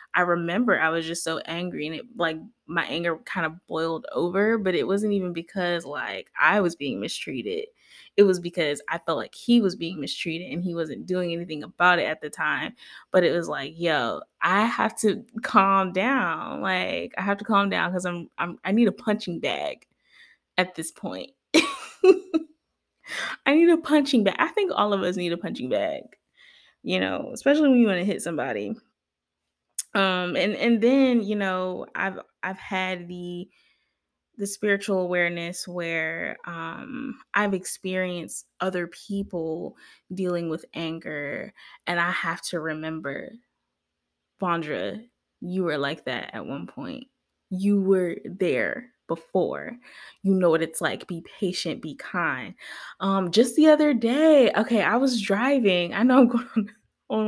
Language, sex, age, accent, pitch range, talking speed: English, female, 20-39, American, 170-235 Hz, 165 wpm